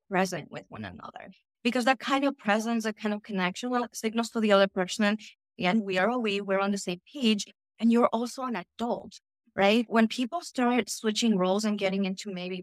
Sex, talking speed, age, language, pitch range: female, 205 wpm, 30-49, English, 195-235 Hz